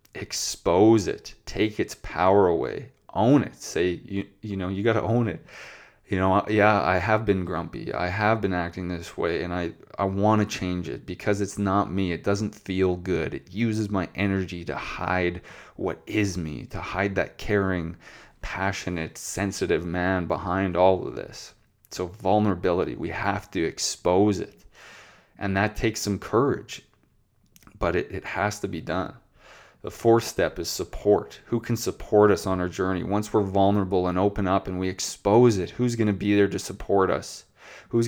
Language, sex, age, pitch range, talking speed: English, male, 20-39, 90-105 Hz, 180 wpm